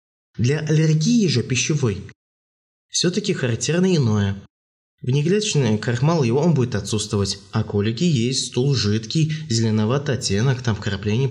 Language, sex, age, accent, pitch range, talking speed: Russian, male, 20-39, native, 105-135 Hz, 125 wpm